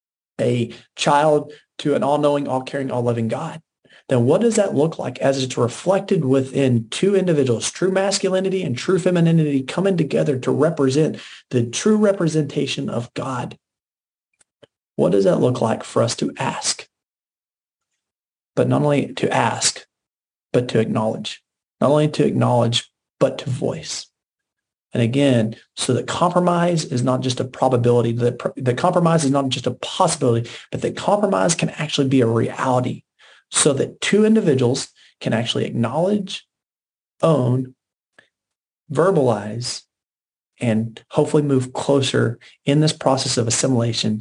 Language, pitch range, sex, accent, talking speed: English, 120-155 Hz, male, American, 140 wpm